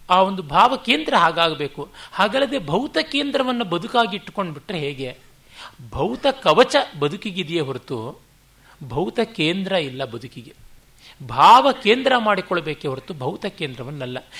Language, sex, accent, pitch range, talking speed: Kannada, male, native, 145-210 Hz, 100 wpm